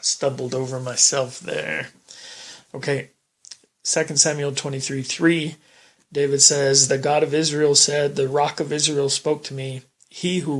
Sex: male